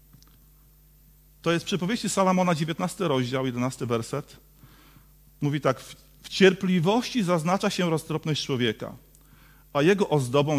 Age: 40-59